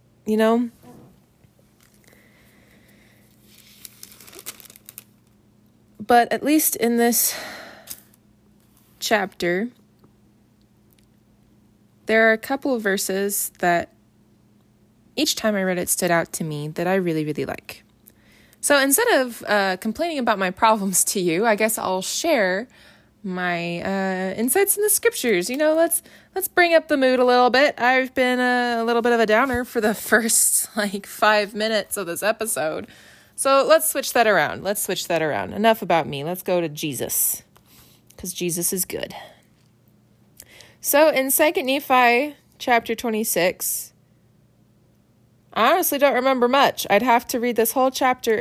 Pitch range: 165-245 Hz